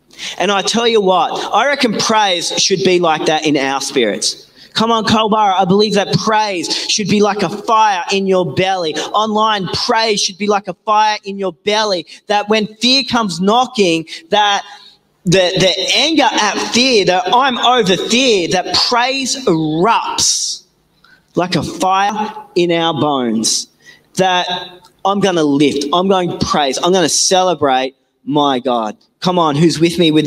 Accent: Australian